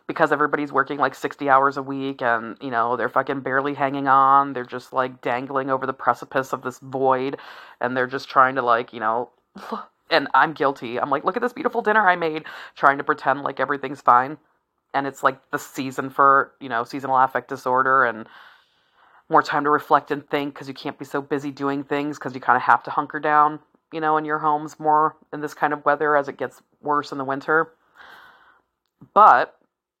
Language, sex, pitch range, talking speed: English, female, 135-160 Hz, 210 wpm